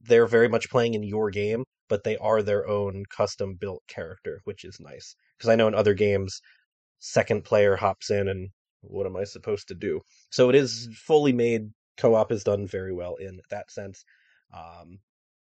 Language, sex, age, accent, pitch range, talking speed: English, male, 20-39, American, 105-160 Hz, 185 wpm